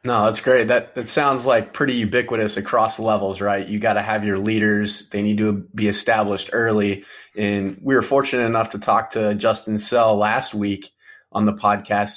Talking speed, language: 190 wpm, English